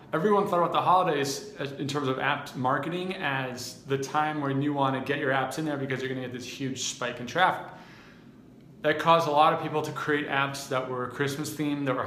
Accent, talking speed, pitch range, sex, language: American, 235 wpm, 135-155 Hz, male, English